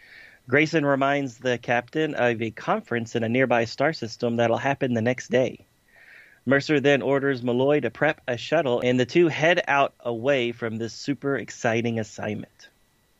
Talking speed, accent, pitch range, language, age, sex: 165 wpm, American, 115-140 Hz, English, 30-49, male